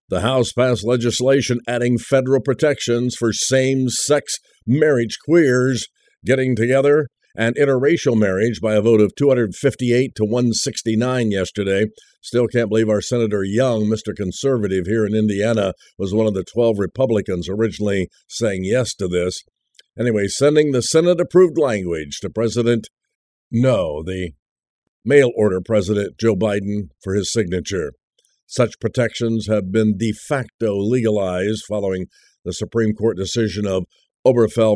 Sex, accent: male, American